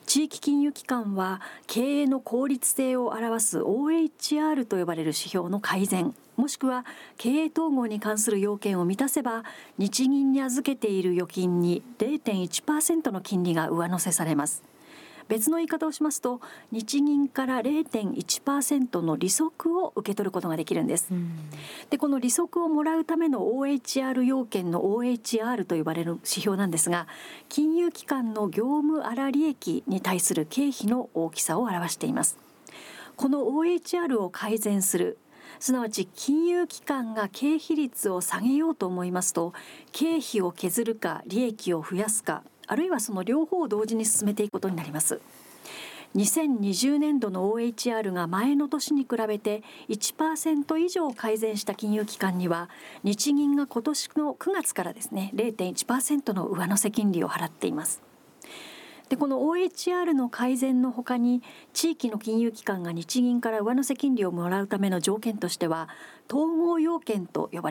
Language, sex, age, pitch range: Japanese, female, 40-59, 200-295 Hz